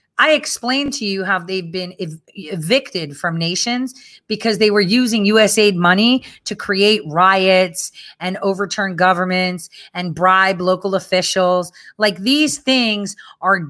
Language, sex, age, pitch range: English, female, 30-49, 185-250 Hz